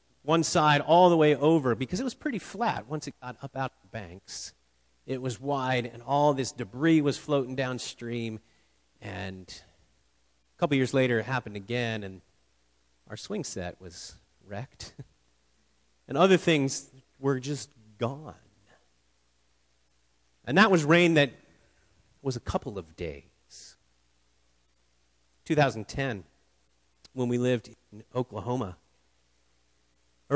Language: English